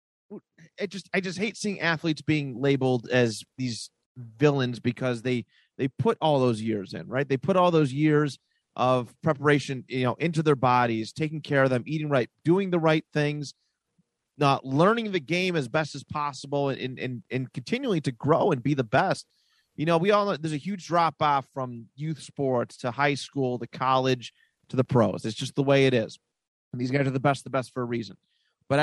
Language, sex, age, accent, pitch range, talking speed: English, male, 30-49, American, 125-155 Hz, 205 wpm